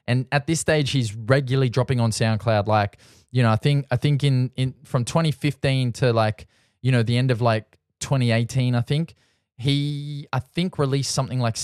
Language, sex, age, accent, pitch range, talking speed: English, male, 20-39, Australian, 120-140 Hz, 200 wpm